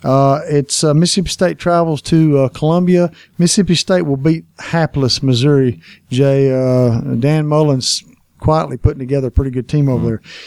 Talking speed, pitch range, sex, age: 160 wpm, 130-165 Hz, male, 50-69